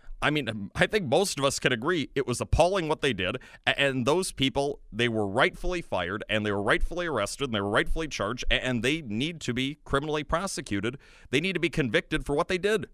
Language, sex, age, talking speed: English, male, 30-49, 225 wpm